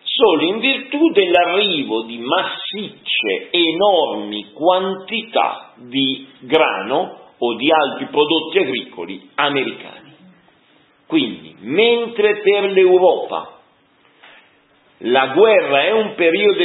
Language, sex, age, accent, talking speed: Italian, male, 50-69, native, 90 wpm